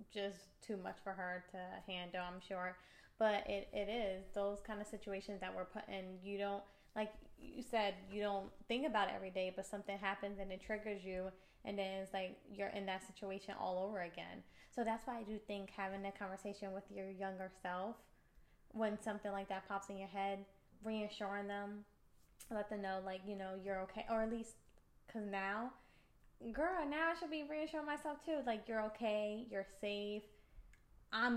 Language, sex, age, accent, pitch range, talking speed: English, female, 20-39, American, 190-215 Hz, 195 wpm